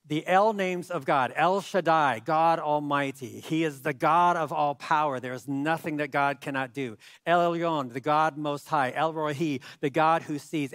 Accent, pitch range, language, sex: American, 145-175 Hz, English, male